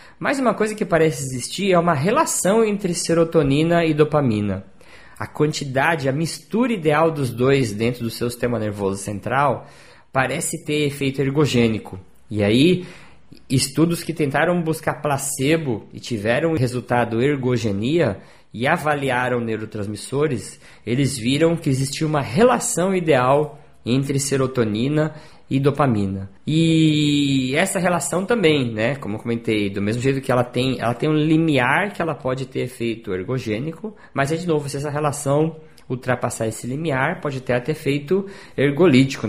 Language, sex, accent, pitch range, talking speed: Portuguese, male, Brazilian, 120-165 Hz, 145 wpm